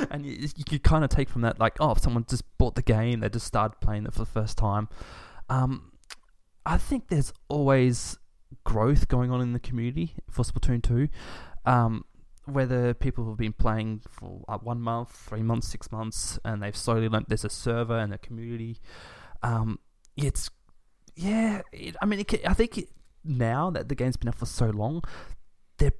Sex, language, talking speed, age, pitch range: male, English, 190 wpm, 20-39, 110-130 Hz